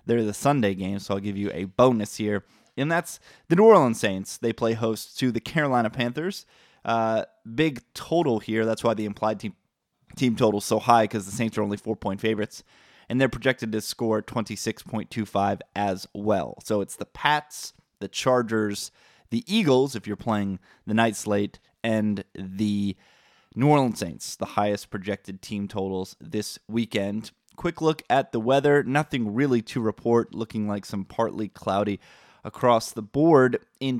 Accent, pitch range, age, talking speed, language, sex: American, 105-125 Hz, 20-39, 170 wpm, English, male